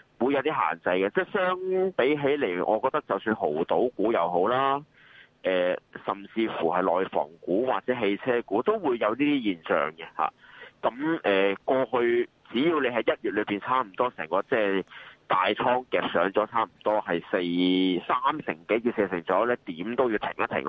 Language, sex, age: Chinese, male, 30-49